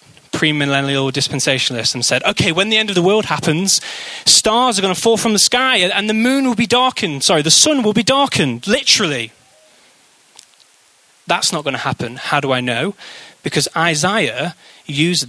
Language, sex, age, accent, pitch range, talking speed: English, male, 20-39, British, 140-210 Hz, 180 wpm